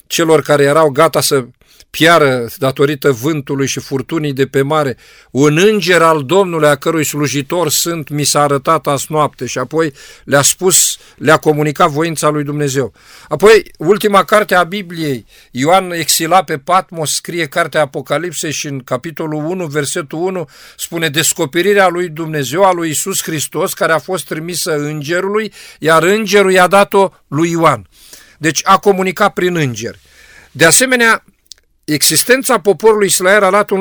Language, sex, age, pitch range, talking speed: Romanian, male, 50-69, 145-185 Hz, 150 wpm